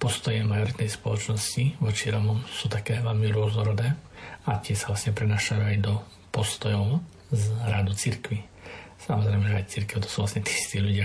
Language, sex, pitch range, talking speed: Slovak, male, 100-115 Hz, 155 wpm